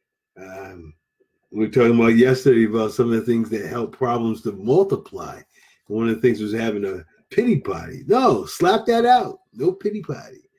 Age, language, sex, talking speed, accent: 50-69, English, male, 180 wpm, American